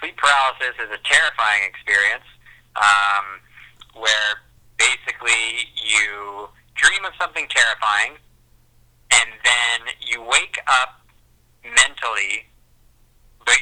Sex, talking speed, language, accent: male, 95 wpm, English, American